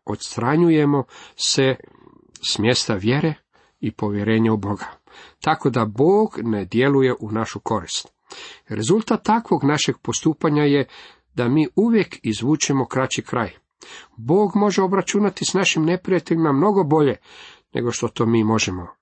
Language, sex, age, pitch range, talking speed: Croatian, male, 40-59, 110-145 Hz, 130 wpm